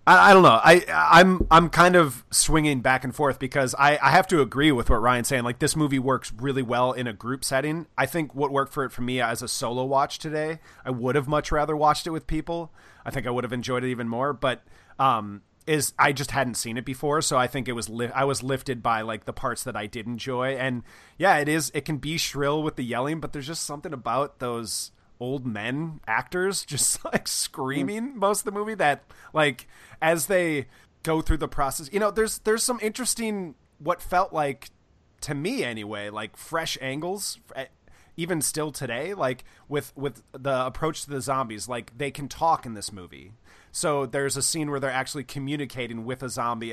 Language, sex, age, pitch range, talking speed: English, male, 30-49, 125-155 Hz, 215 wpm